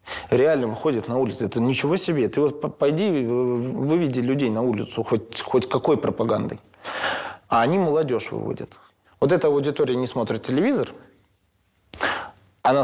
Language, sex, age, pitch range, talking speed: Russian, male, 20-39, 110-145 Hz, 135 wpm